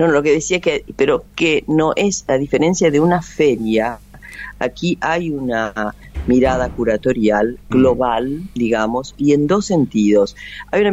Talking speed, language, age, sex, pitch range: 160 wpm, Spanish, 40-59, female, 110-150 Hz